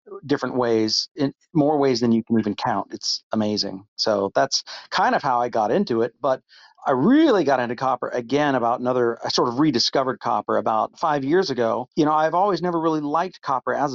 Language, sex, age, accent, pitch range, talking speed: English, male, 40-59, American, 115-150 Hz, 205 wpm